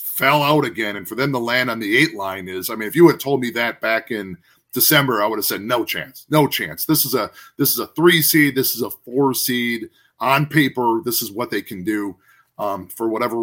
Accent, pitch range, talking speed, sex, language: American, 115-155 Hz, 250 wpm, male, English